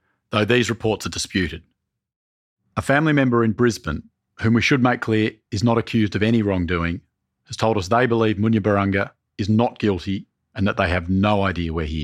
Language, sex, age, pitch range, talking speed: English, male, 40-59, 100-120 Hz, 190 wpm